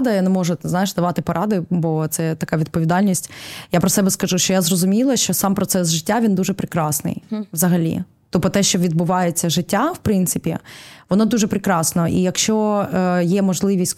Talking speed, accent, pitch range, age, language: 170 wpm, native, 175-200 Hz, 20-39, Ukrainian